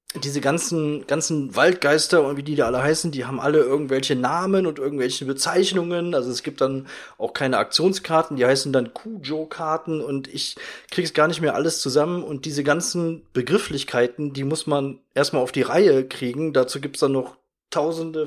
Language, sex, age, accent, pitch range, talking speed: German, male, 30-49, German, 135-165 Hz, 175 wpm